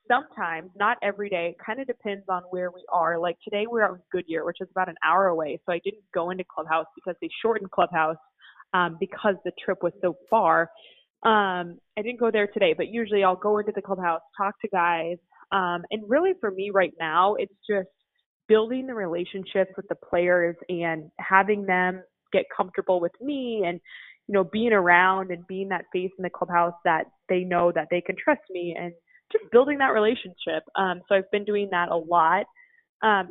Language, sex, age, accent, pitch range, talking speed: English, female, 20-39, American, 175-215 Hz, 200 wpm